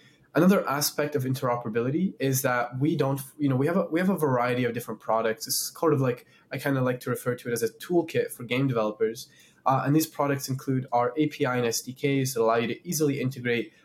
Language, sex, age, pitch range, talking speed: English, male, 20-39, 120-150 Hz, 235 wpm